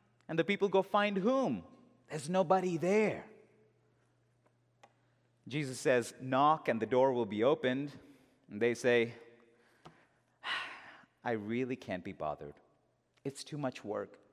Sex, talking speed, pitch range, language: male, 125 wpm, 115-160 Hz, English